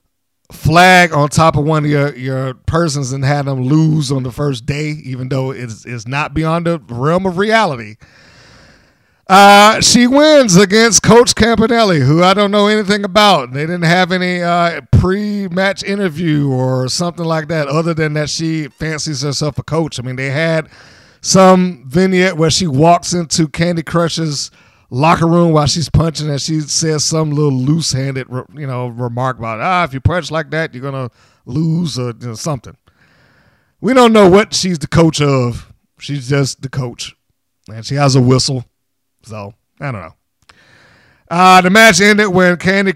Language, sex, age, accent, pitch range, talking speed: English, male, 50-69, American, 130-180 Hz, 175 wpm